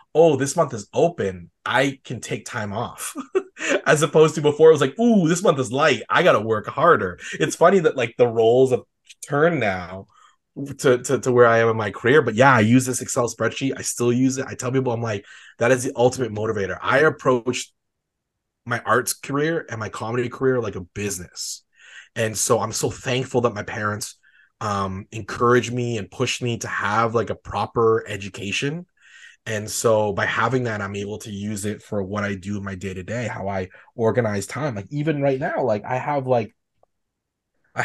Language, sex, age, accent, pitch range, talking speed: English, male, 20-39, American, 100-130 Hz, 205 wpm